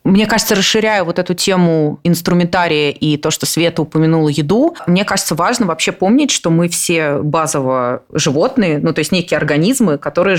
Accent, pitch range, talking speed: native, 155-195 Hz, 170 wpm